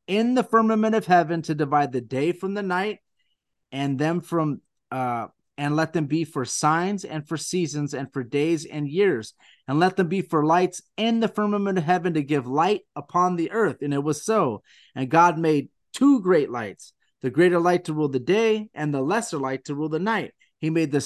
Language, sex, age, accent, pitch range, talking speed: English, male, 30-49, American, 135-180 Hz, 215 wpm